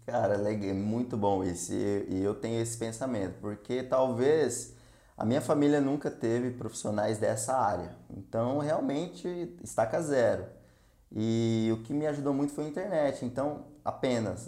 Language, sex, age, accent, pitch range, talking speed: Portuguese, male, 20-39, Brazilian, 115-145 Hz, 145 wpm